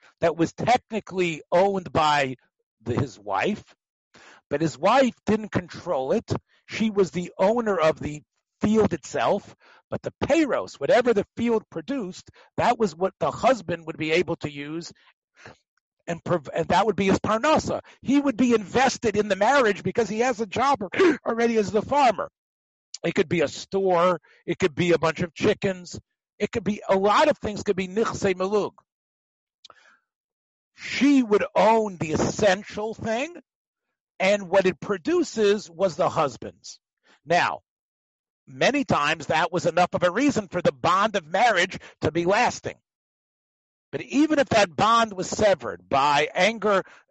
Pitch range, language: 175-230 Hz, English